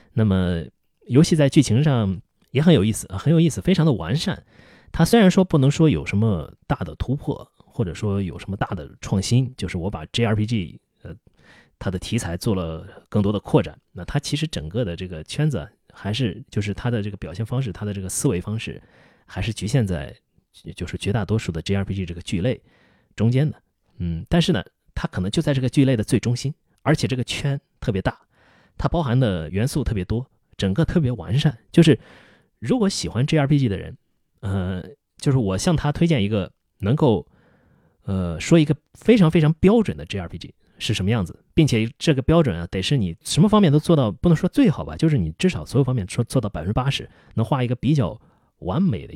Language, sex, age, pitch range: Chinese, male, 30-49, 95-145 Hz